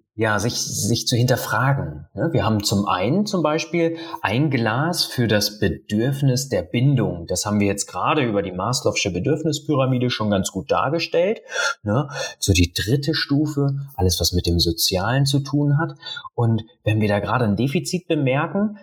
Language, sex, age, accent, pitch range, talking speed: German, male, 30-49, German, 105-140 Hz, 165 wpm